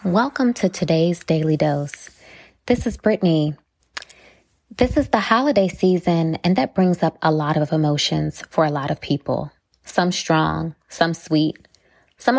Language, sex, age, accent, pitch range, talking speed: English, female, 20-39, American, 165-200 Hz, 150 wpm